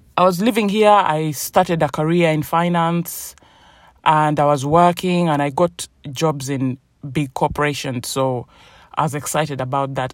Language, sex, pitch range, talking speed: English, male, 135-180 Hz, 160 wpm